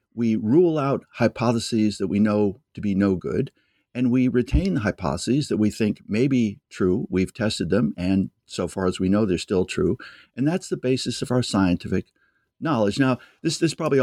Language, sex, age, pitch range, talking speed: English, male, 60-79, 100-130 Hz, 195 wpm